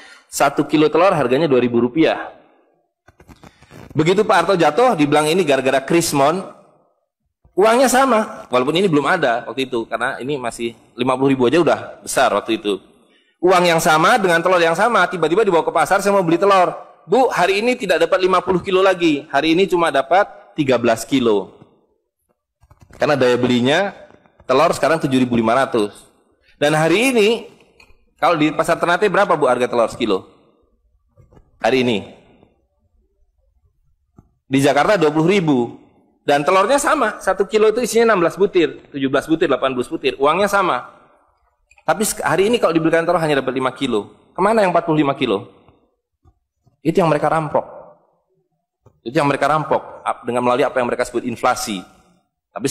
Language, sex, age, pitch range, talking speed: Malay, male, 20-39, 125-185 Hz, 155 wpm